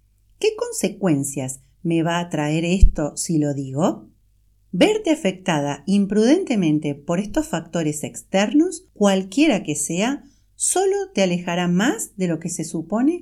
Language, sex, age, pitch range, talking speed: Spanish, female, 40-59, 160-255 Hz, 130 wpm